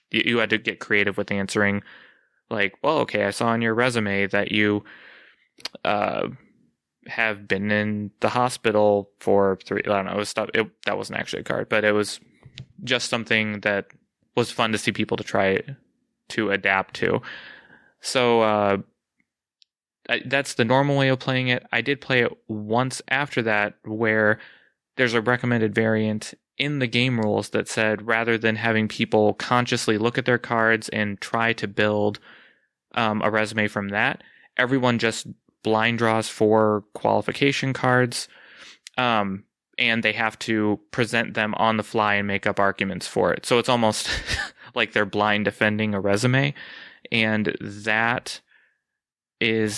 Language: English